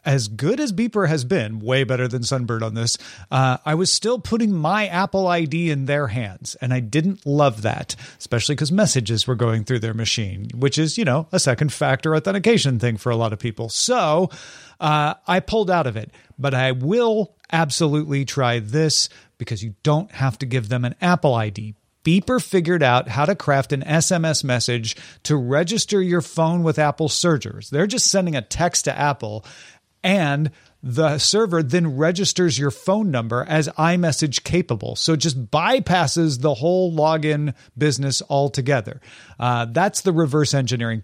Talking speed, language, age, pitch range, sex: 175 wpm, English, 40-59, 125-170 Hz, male